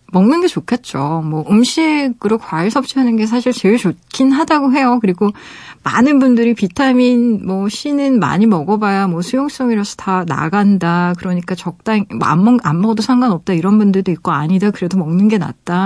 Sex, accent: female, native